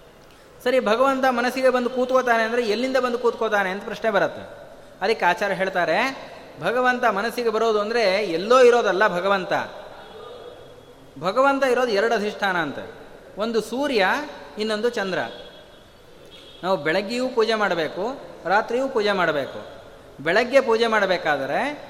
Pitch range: 210-270 Hz